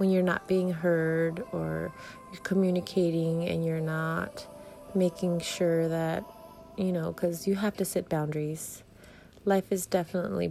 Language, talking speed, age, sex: English, 145 wpm, 30-49, female